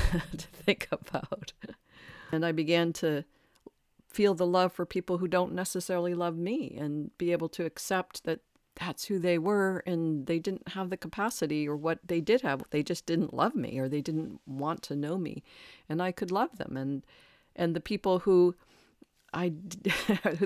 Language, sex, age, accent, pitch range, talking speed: English, female, 50-69, American, 140-175 Hz, 175 wpm